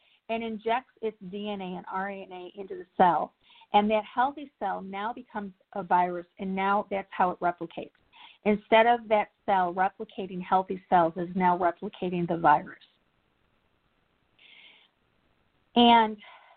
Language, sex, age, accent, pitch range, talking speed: English, female, 40-59, American, 180-225 Hz, 130 wpm